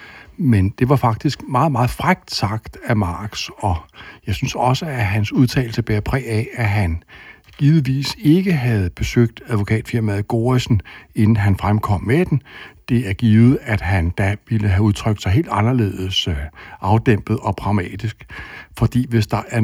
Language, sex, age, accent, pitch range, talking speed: Danish, male, 60-79, native, 100-120 Hz, 160 wpm